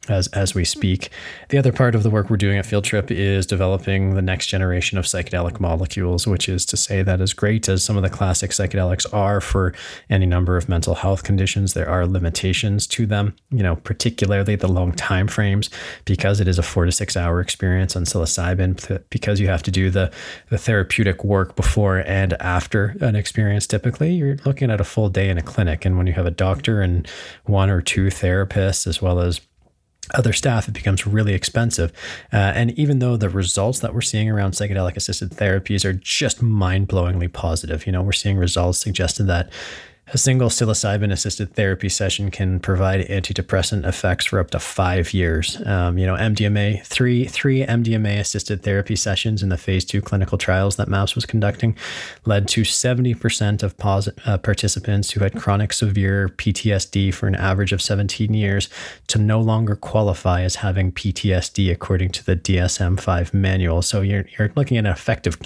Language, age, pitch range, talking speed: English, 20-39, 90-105 Hz, 190 wpm